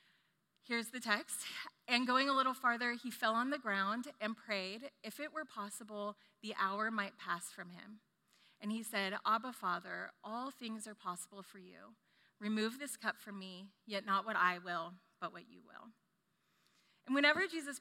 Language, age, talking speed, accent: English, 30-49, 180 wpm, American